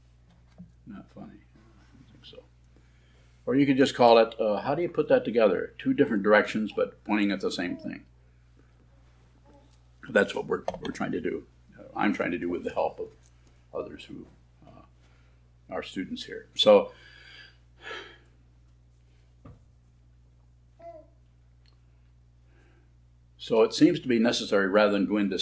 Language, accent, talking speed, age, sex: English, American, 140 wpm, 50-69, male